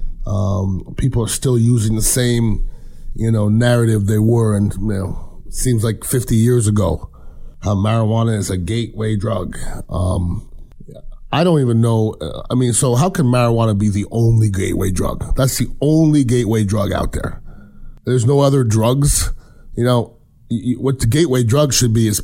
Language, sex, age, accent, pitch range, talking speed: English, male, 30-49, American, 105-130 Hz, 170 wpm